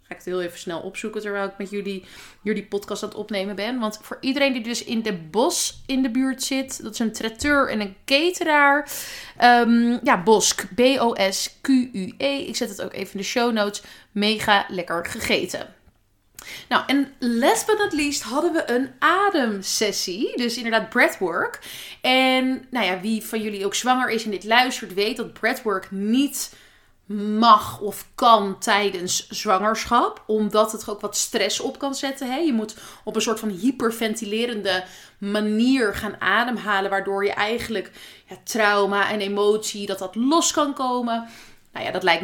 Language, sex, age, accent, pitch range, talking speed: Dutch, female, 20-39, Dutch, 200-250 Hz, 170 wpm